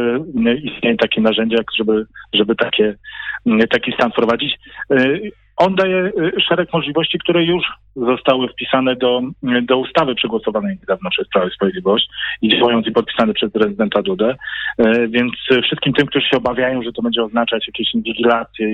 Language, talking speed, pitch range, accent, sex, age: Polish, 140 wpm, 115-140 Hz, native, male, 40-59